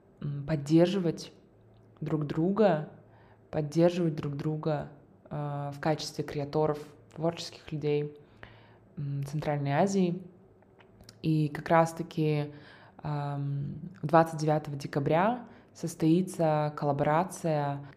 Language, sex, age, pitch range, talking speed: Russian, female, 20-39, 145-165 Hz, 75 wpm